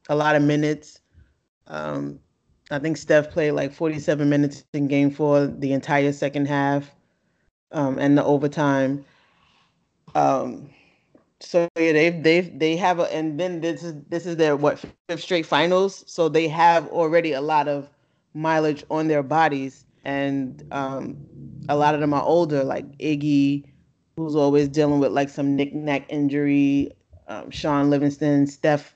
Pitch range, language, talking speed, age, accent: 140-160 Hz, English, 150 wpm, 20-39, American